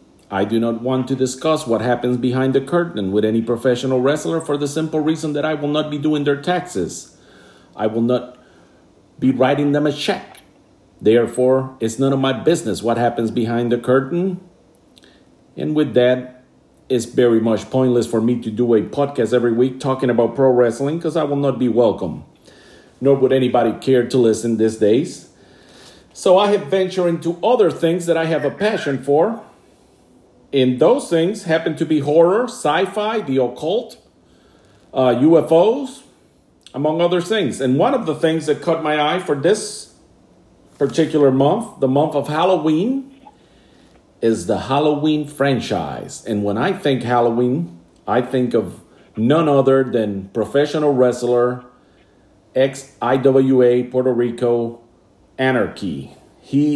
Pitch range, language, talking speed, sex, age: 120-155 Hz, English, 155 wpm, male, 50-69